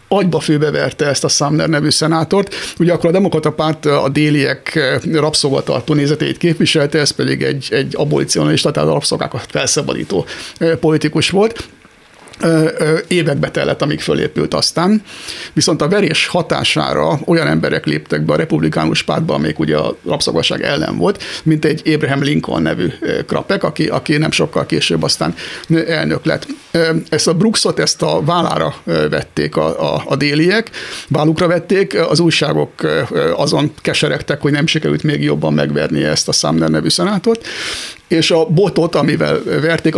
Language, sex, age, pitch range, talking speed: Hungarian, male, 60-79, 150-170 Hz, 145 wpm